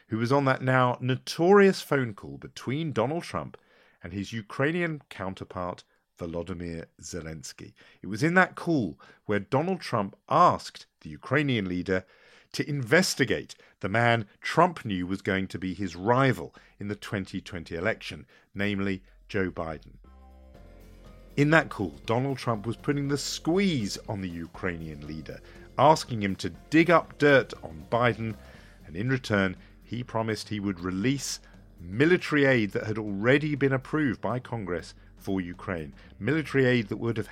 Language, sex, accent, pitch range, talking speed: English, male, British, 95-145 Hz, 150 wpm